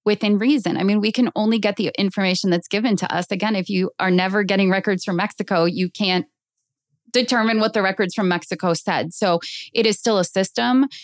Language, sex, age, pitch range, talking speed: English, female, 20-39, 170-215 Hz, 205 wpm